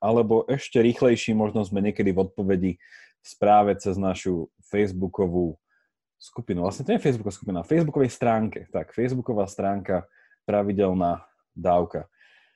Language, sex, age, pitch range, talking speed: Slovak, male, 20-39, 110-140 Hz, 130 wpm